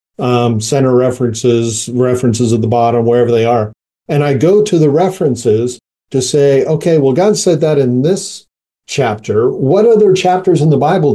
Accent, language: American, English